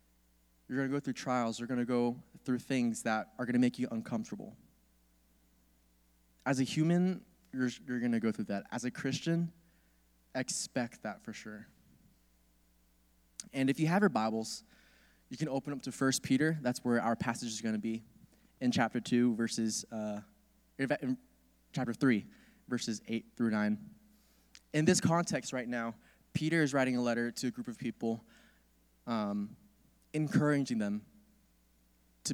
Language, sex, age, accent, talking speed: English, male, 20-39, American, 160 wpm